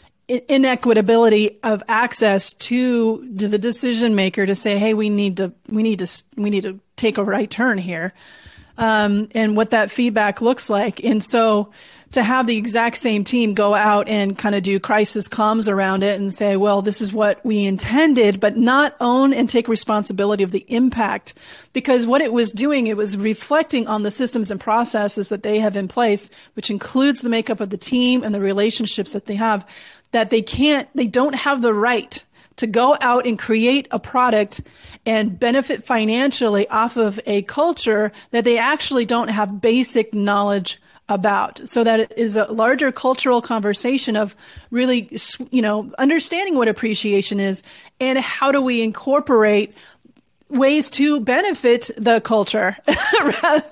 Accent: American